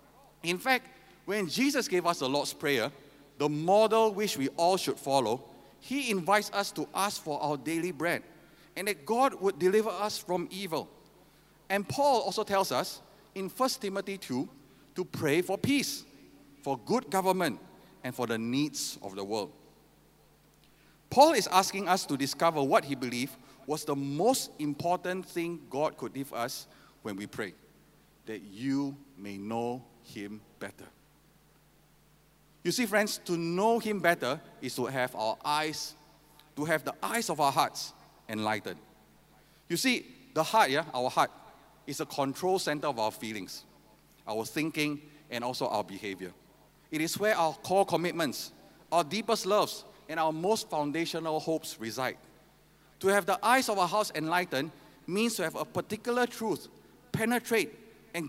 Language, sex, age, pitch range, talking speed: English, male, 50-69, 140-200 Hz, 160 wpm